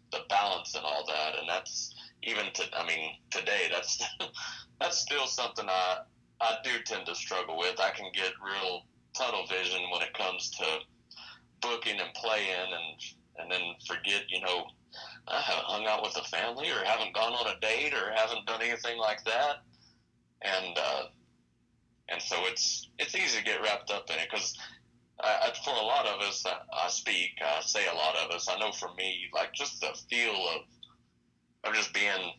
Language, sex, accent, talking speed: English, male, American, 190 wpm